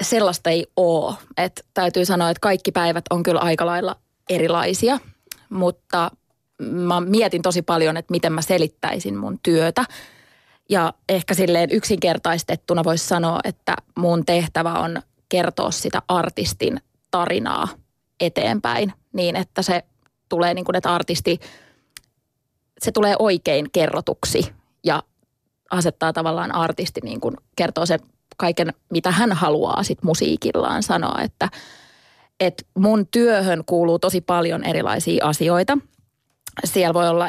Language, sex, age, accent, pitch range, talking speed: Finnish, female, 20-39, native, 165-185 Hz, 125 wpm